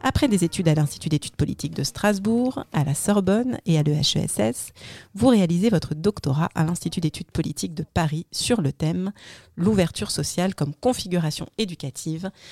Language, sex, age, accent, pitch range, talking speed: French, female, 30-49, French, 155-195 Hz, 165 wpm